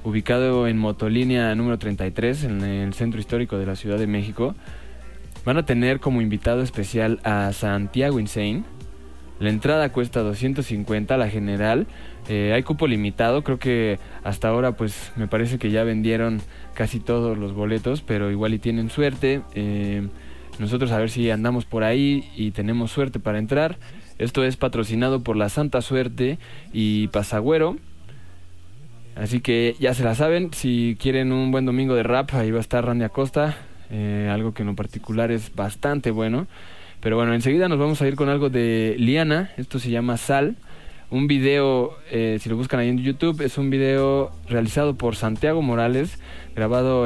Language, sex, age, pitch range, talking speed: Spanish, male, 20-39, 105-130 Hz, 170 wpm